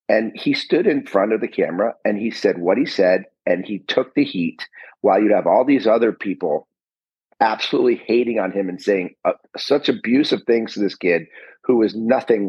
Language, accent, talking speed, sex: English, American, 200 wpm, male